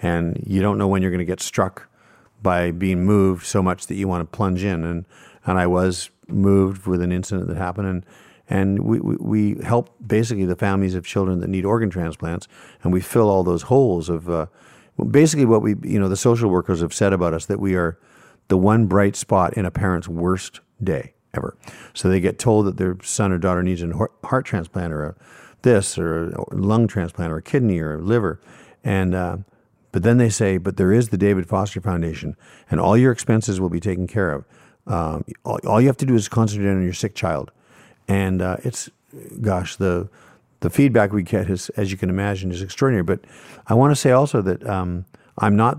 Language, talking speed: English, 220 wpm